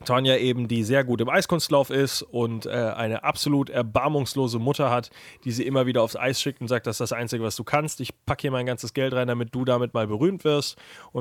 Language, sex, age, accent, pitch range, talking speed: German, male, 30-49, German, 120-140 Hz, 240 wpm